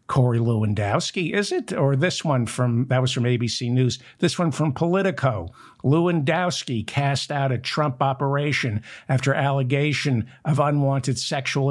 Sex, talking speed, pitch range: male, 145 wpm, 120-150 Hz